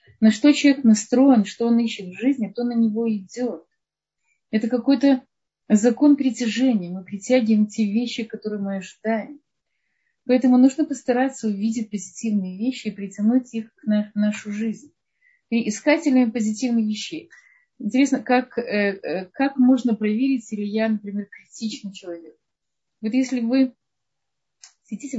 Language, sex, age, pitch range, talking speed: Russian, female, 30-49, 205-260 Hz, 130 wpm